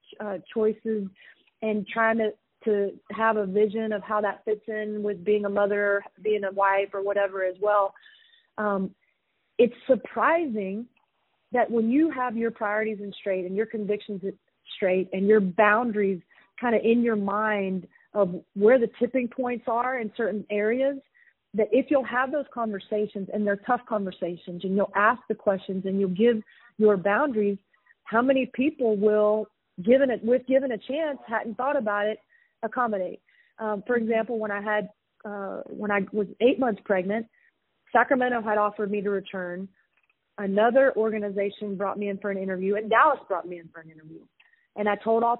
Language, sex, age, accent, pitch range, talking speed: English, female, 40-59, American, 195-230 Hz, 175 wpm